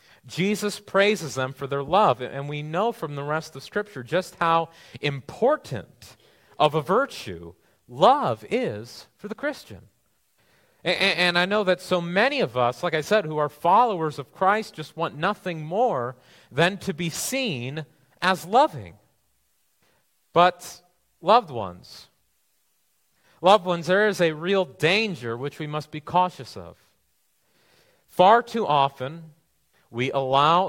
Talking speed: 145 wpm